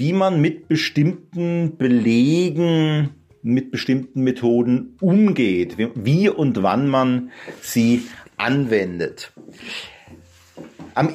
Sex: male